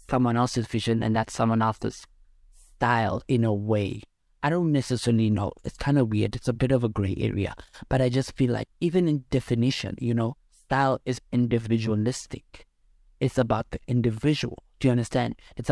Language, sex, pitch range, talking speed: English, male, 115-130 Hz, 180 wpm